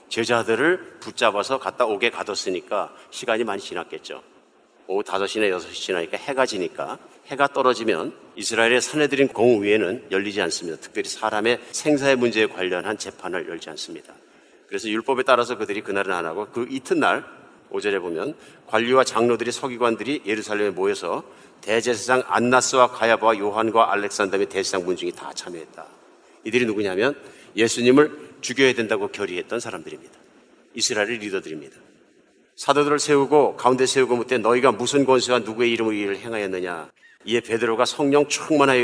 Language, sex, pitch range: Korean, male, 115-145 Hz